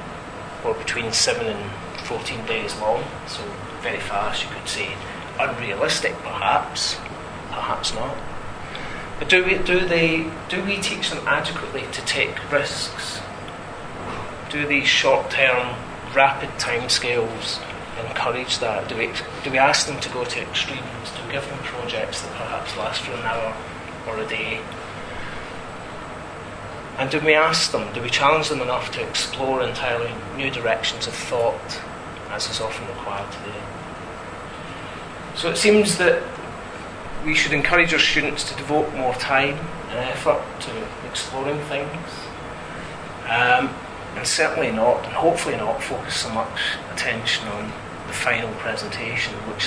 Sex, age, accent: male, 30-49, British